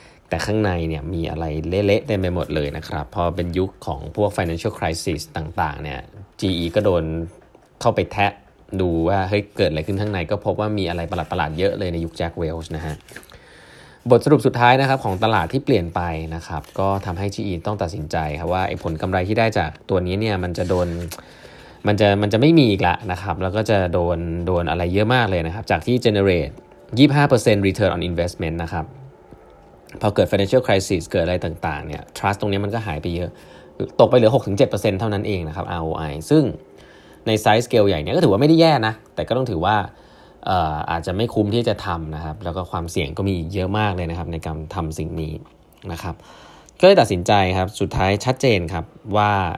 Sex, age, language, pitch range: male, 20-39, Thai, 85-105 Hz